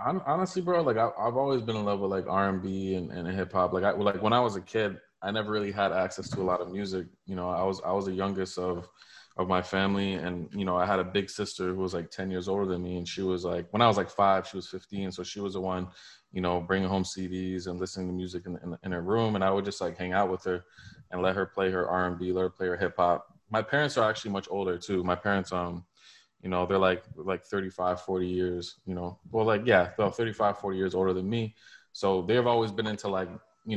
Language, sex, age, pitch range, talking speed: English, male, 20-39, 90-100 Hz, 270 wpm